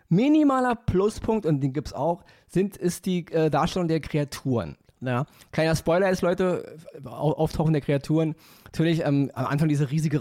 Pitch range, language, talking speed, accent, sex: 130-170 Hz, German, 170 wpm, German, male